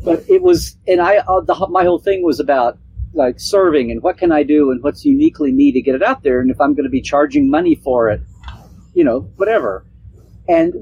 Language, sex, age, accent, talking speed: English, male, 50-69, American, 240 wpm